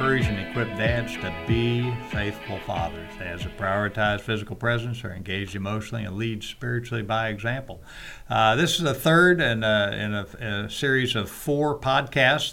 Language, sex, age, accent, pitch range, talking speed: English, male, 50-69, American, 100-125 Hz, 160 wpm